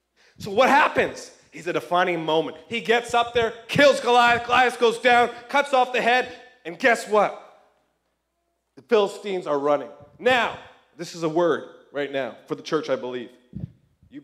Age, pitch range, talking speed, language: 30-49, 185-265 Hz, 175 wpm, English